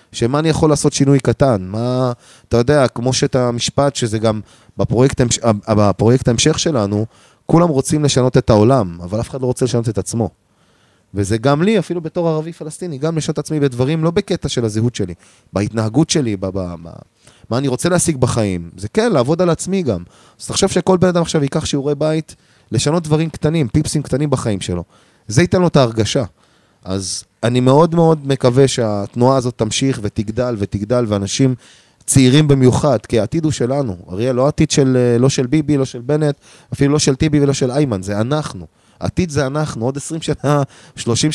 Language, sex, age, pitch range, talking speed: Hebrew, male, 20-39, 110-150 Hz, 185 wpm